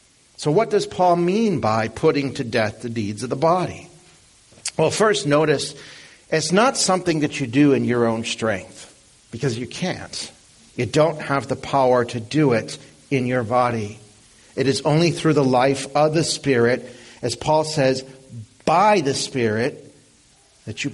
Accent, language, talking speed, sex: American, English, 165 wpm, male